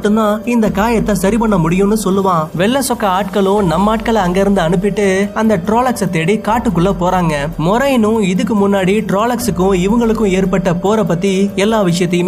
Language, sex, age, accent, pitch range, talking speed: Tamil, male, 20-39, native, 185-220 Hz, 75 wpm